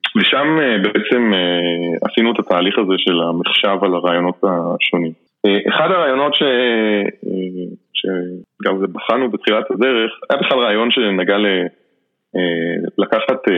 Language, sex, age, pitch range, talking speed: Hebrew, male, 20-39, 90-110 Hz, 100 wpm